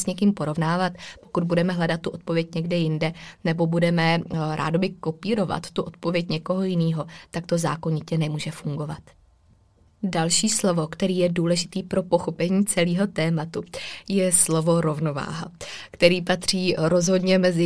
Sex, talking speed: female, 135 wpm